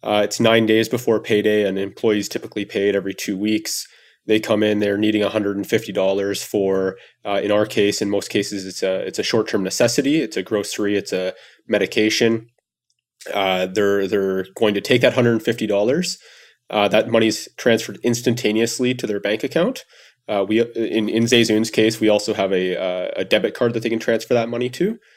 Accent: American